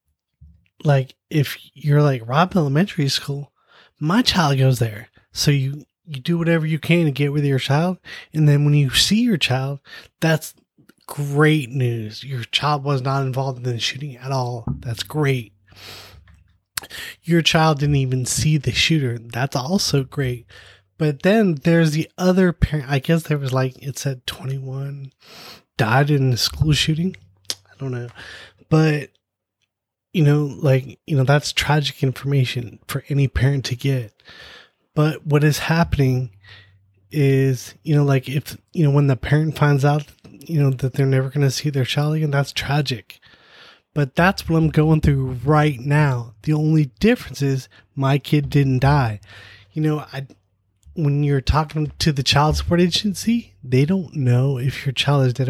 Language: English